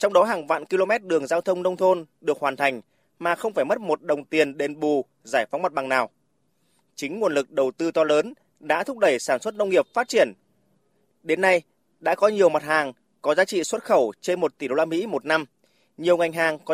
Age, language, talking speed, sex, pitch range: 20-39, Vietnamese, 240 wpm, male, 150-185 Hz